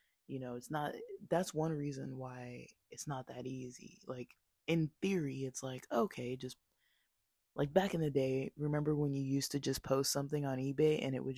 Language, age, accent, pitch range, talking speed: English, 20-39, American, 130-155 Hz, 195 wpm